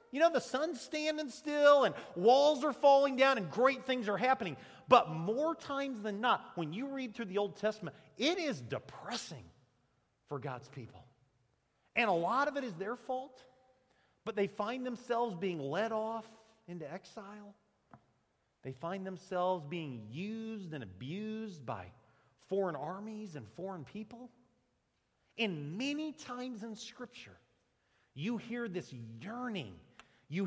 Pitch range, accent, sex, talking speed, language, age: 160-245 Hz, American, male, 145 wpm, English, 40-59